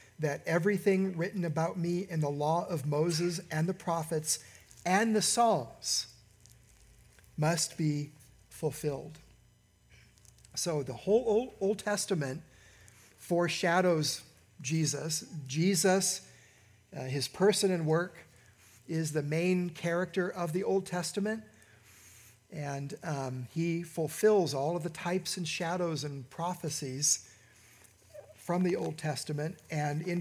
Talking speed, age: 115 wpm, 50-69